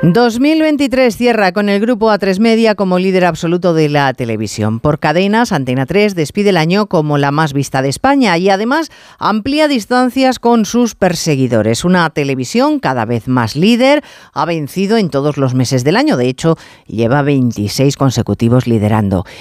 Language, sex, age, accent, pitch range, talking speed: Spanish, female, 40-59, Spanish, 130-215 Hz, 165 wpm